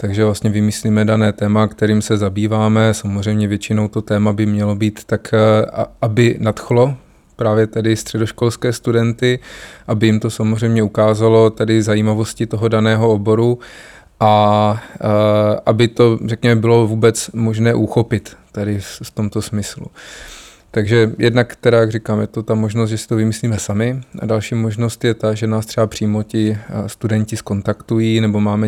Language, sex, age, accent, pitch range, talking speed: Czech, male, 20-39, native, 105-115 Hz, 150 wpm